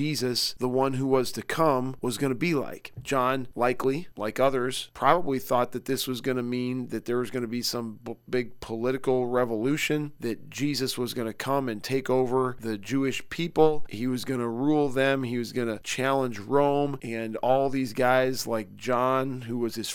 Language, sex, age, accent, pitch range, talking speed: English, male, 40-59, American, 120-135 Hz, 200 wpm